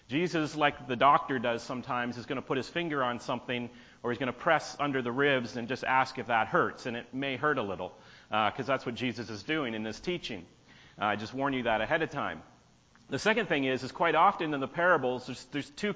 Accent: American